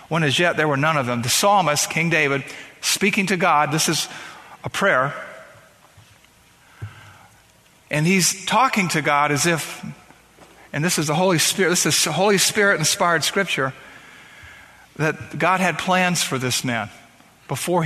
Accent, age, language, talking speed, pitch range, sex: American, 50-69, English, 150 wpm, 140-180 Hz, male